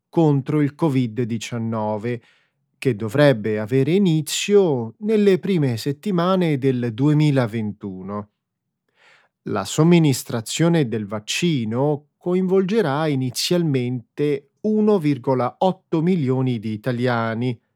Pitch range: 115-150 Hz